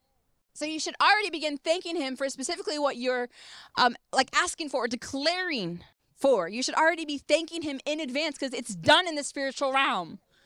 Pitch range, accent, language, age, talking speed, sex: 270-335 Hz, American, English, 20-39, 190 wpm, female